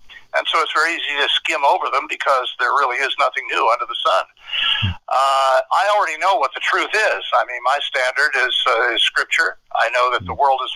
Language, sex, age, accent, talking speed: English, male, 60-79, American, 225 wpm